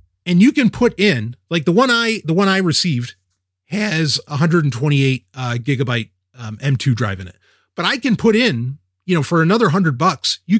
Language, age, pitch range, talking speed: English, 30-49, 115-190 Hz, 195 wpm